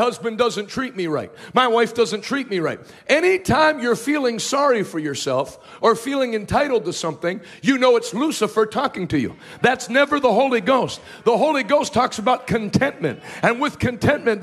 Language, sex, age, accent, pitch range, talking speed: English, male, 50-69, American, 205-265 Hz, 180 wpm